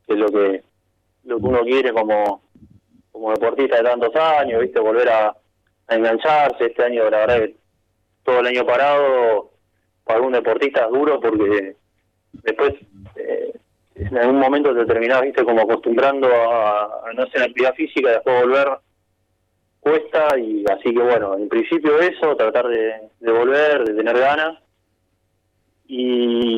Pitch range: 105-155 Hz